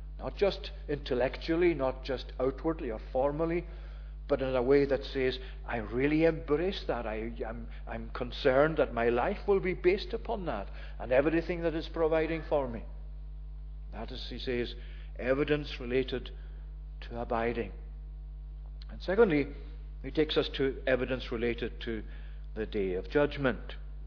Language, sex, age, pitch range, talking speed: English, male, 60-79, 115-150 Hz, 145 wpm